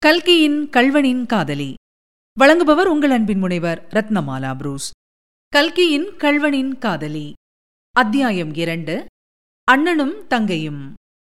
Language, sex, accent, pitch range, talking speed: Tamil, female, native, 190-295 Hz, 85 wpm